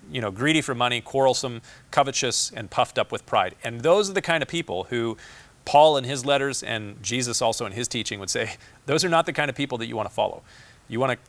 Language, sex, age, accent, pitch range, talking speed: English, male, 40-59, American, 110-140 Hz, 240 wpm